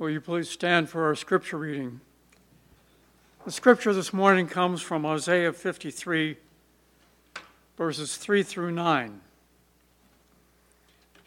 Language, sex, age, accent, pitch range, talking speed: English, male, 60-79, American, 120-165 Hz, 105 wpm